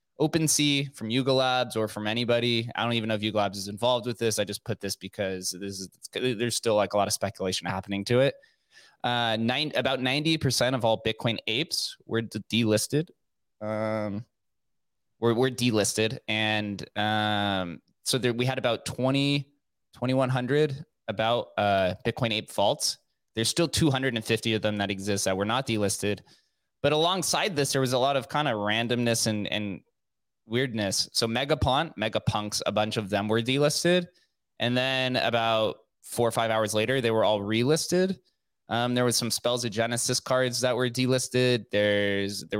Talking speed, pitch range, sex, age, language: 175 wpm, 105-130 Hz, male, 20-39, English